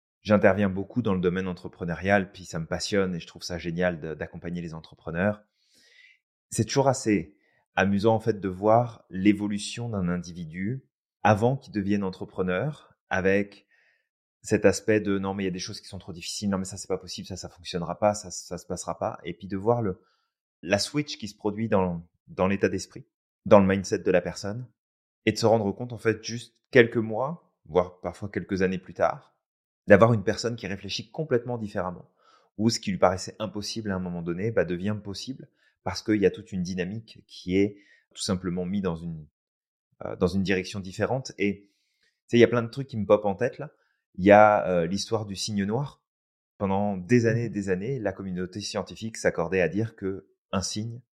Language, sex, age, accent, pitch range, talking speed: French, male, 30-49, French, 90-115 Hz, 210 wpm